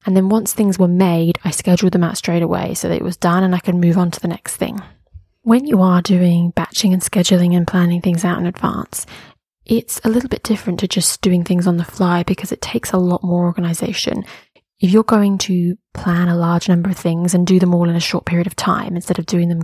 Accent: British